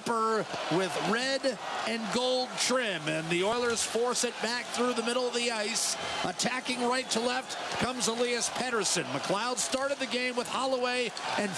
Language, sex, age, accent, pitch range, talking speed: English, male, 40-59, American, 225-270 Hz, 160 wpm